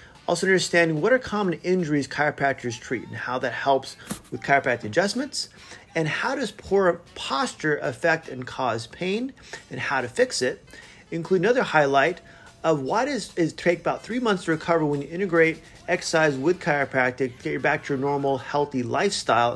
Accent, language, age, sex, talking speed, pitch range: American, English, 30-49, male, 180 wpm, 135-180 Hz